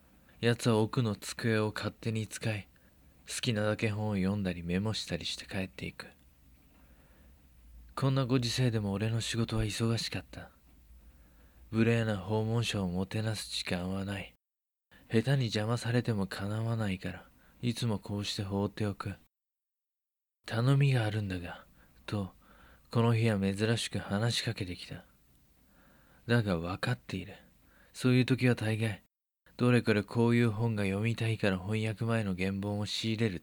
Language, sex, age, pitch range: Japanese, male, 20-39, 95-115 Hz